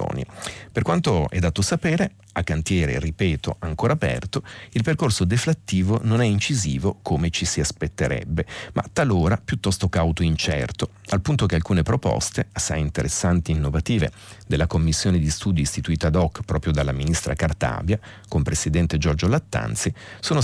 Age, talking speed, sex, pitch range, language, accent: 40-59, 150 wpm, male, 80-110 Hz, Italian, native